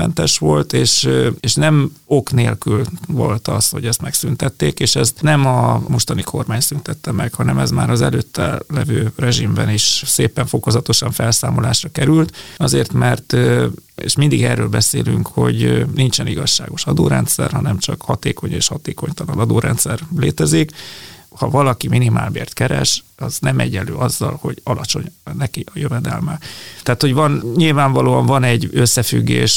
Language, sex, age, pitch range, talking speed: Hungarian, male, 30-49, 105-145 Hz, 140 wpm